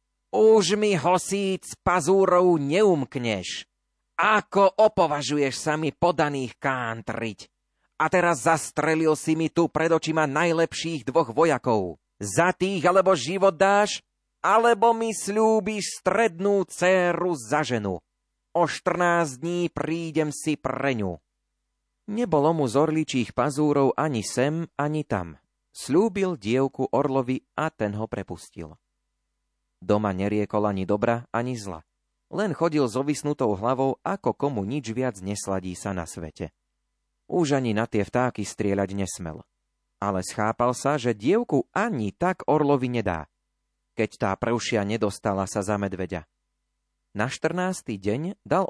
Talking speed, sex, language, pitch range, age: 125 wpm, male, Slovak, 100-165 Hz, 30-49